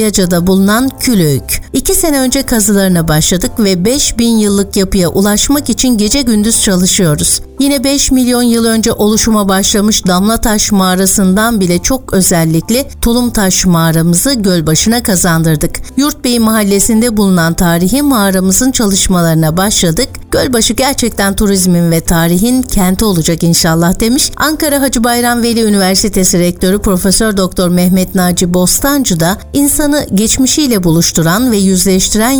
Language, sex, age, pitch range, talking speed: Turkish, female, 60-79, 185-245 Hz, 120 wpm